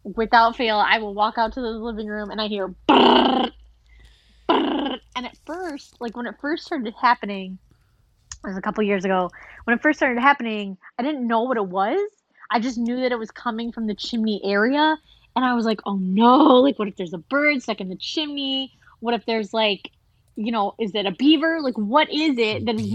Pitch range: 215-280 Hz